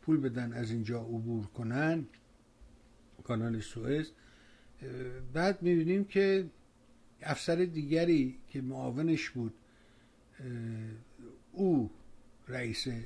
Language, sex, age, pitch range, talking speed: Persian, male, 60-79, 115-145 Hz, 85 wpm